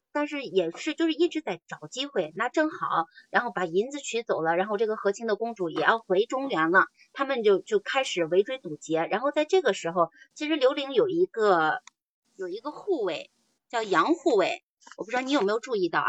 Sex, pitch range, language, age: female, 185-295 Hz, Chinese, 30-49